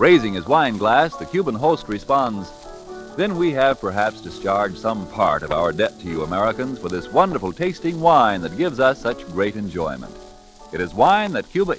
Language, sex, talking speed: English, male, 190 wpm